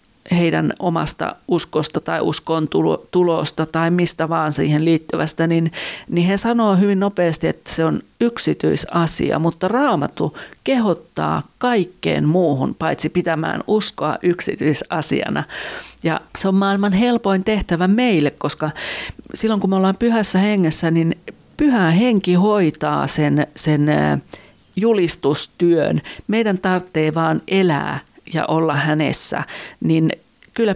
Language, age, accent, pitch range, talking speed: Finnish, 40-59, native, 155-200 Hz, 115 wpm